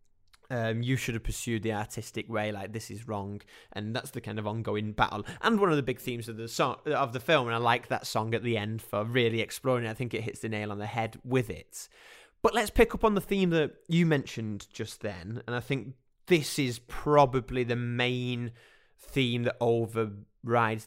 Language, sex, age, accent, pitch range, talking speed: English, male, 20-39, British, 110-140 Hz, 220 wpm